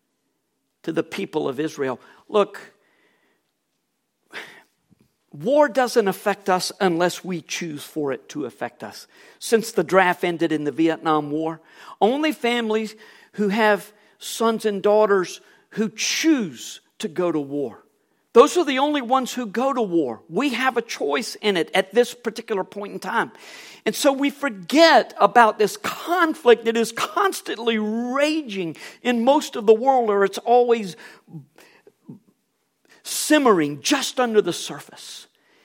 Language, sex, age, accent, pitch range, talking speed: English, male, 50-69, American, 185-260 Hz, 140 wpm